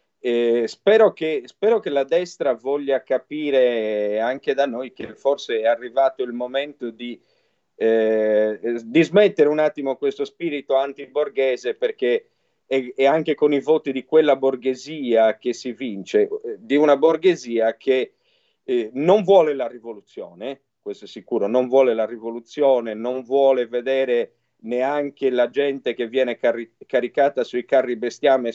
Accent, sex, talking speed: native, male, 140 wpm